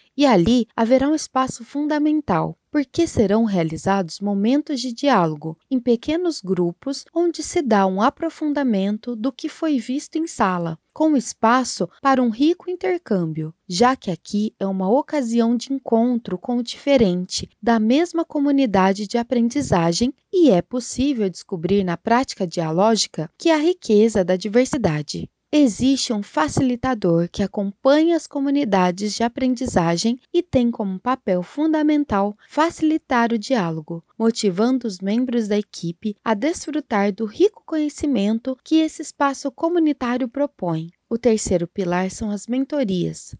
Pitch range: 200-280 Hz